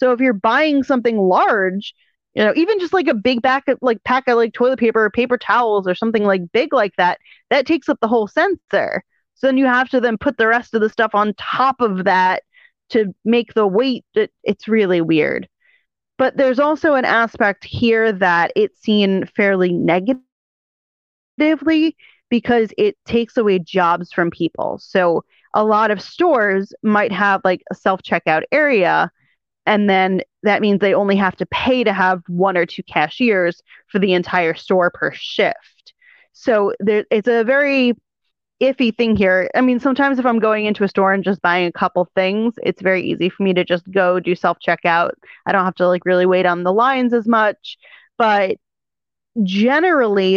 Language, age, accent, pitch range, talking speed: English, 30-49, American, 185-250 Hz, 185 wpm